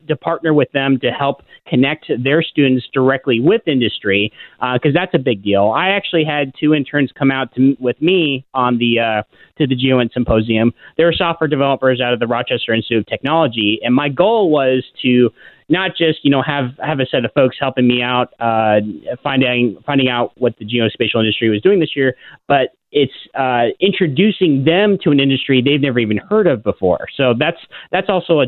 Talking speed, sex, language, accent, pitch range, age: 200 wpm, male, English, American, 120-155 Hz, 30-49